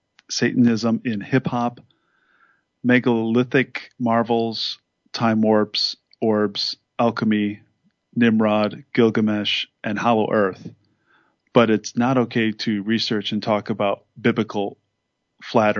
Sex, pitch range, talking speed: male, 105-125 Hz, 95 wpm